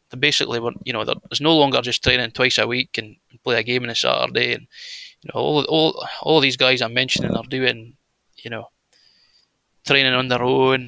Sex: male